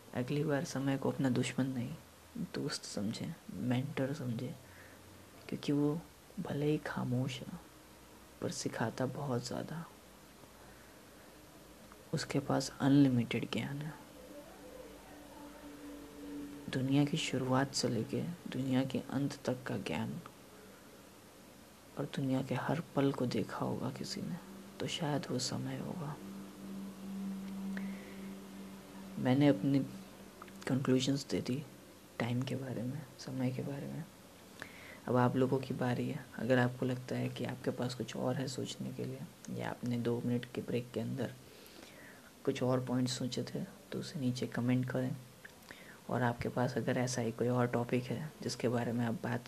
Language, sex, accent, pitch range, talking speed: Hindi, female, native, 120-135 Hz, 140 wpm